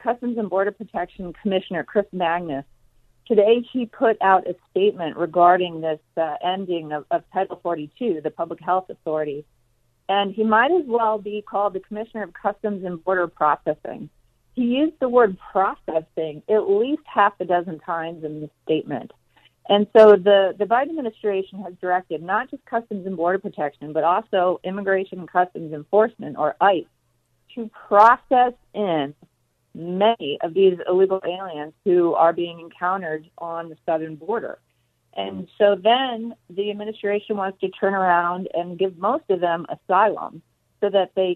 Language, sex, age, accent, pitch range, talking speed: English, female, 40-59, American, 165-210 Hz, 160 wpm